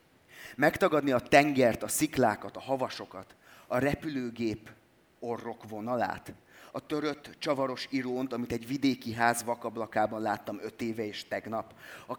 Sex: male